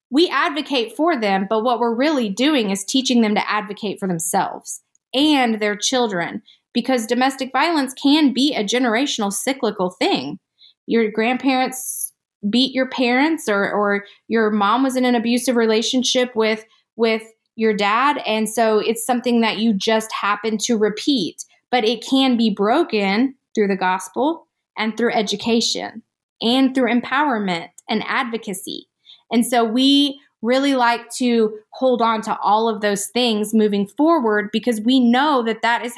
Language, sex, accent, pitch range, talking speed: English, female, American, 210-255 Hz, 155 wpm